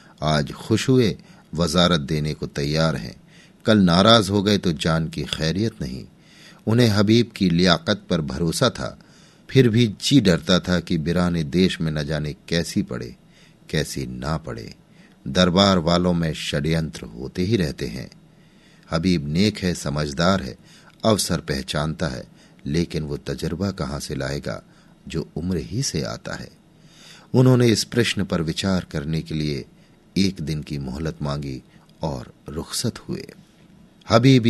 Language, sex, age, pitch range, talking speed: Hindi, male, 50-69, 75-105 Hz, 150 wpm